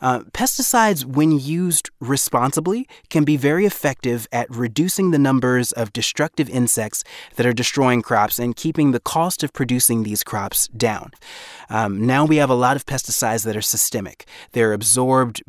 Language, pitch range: English, 115-145 Hz